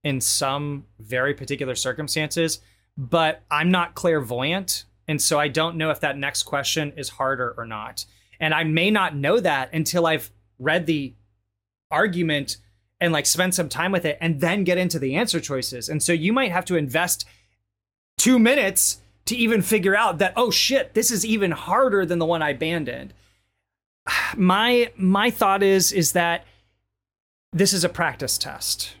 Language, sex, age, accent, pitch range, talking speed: English, male, 30-49, American, 115-180 Hz, 170 wpm